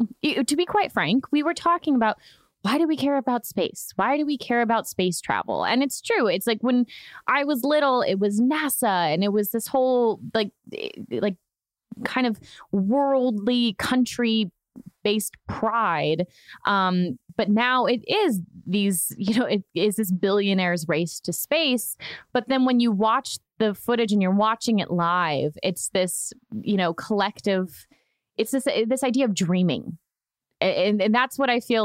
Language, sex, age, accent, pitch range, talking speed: English, female, 20-39, American, 185-245 Hz, 170 wpm